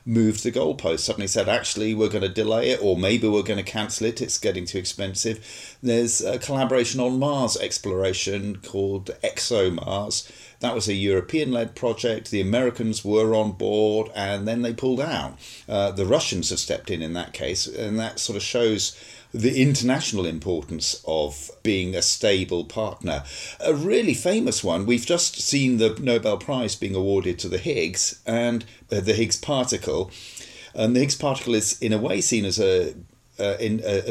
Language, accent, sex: English, British, male